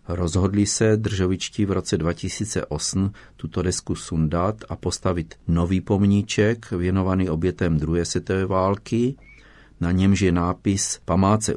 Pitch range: 85-105 Hz